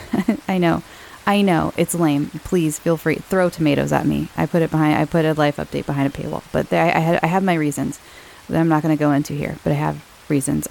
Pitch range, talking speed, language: 155-190 Hz, 260 wpm, English